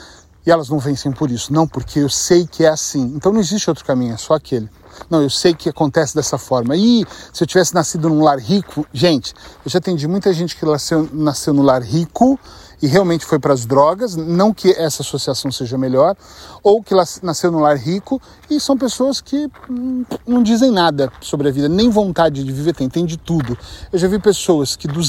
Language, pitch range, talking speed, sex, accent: Portuguese, 145-180 Hz, 215 wpm, male, Brazilian